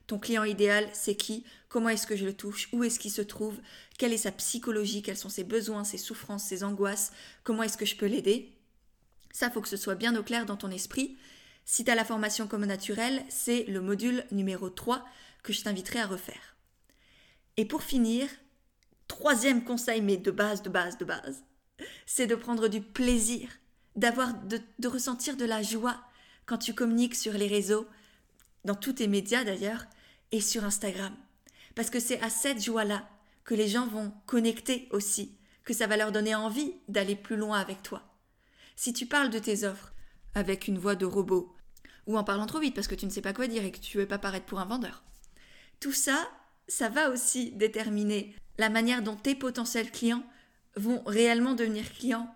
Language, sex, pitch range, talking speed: French, female, 205-245 Hz, 200 wpm